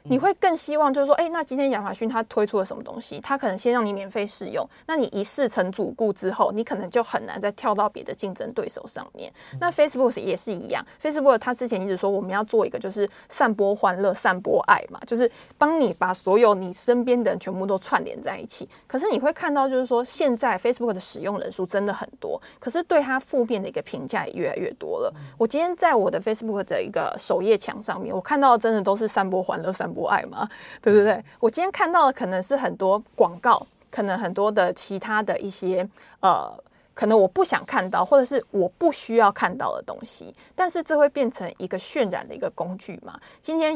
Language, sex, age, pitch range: Chinese, female, 20-39, 200-275 Hz